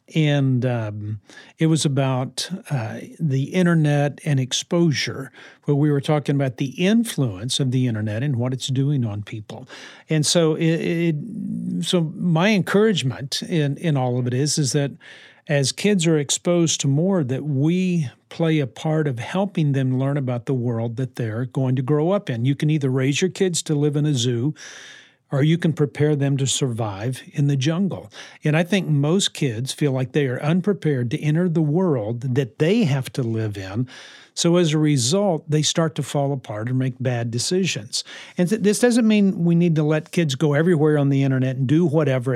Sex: male